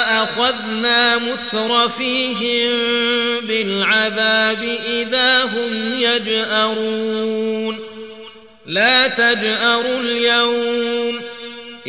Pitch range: 220-255 Hz